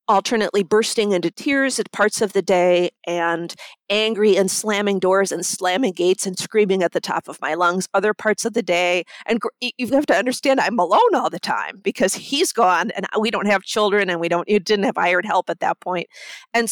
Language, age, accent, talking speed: English, 40-59, American, 215 wpm